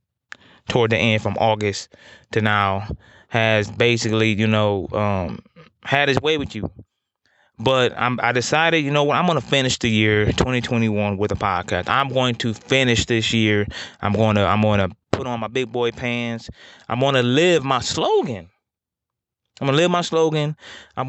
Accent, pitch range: American, 110-130 Hz